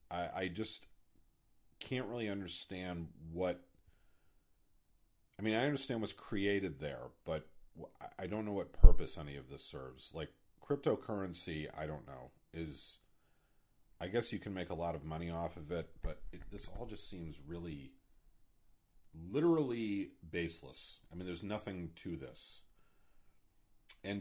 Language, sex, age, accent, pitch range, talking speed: English, male, 40-59, American, 80-105 Hz, 140 wpm